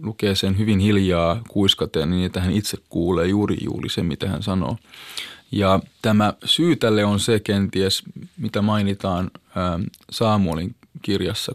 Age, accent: 20-39, native